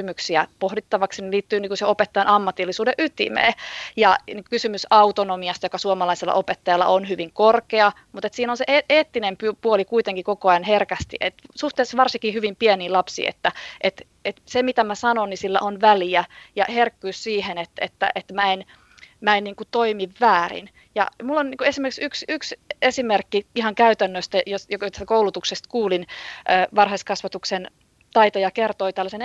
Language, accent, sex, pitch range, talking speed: Finnish, native, female, 195-235 Hz, 135 wpm